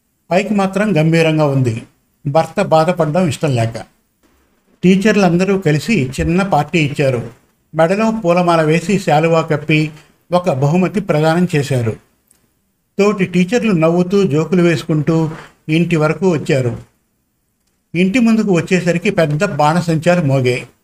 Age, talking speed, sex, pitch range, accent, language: 50-69, 105 wpm, male, 150-180 Hz, native, Telugu